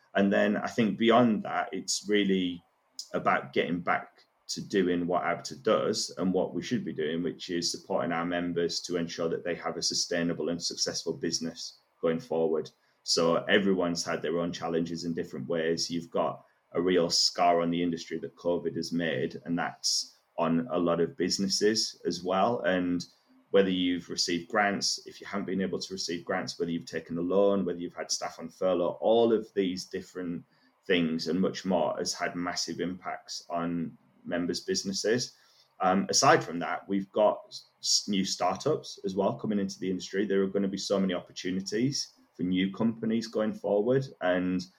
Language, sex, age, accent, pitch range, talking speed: English, male, 20-39, British, 85-95 Hz, 180 wpm